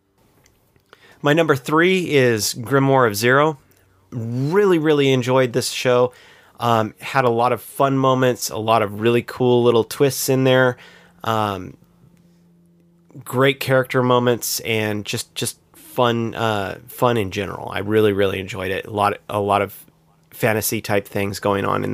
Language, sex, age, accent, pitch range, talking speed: English, male, 30-49, American, 110-135 Hz, 155 wpm